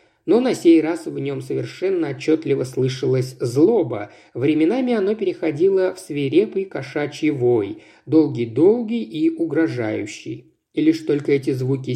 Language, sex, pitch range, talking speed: Russian, male, 125-180 Hz, 125 wpm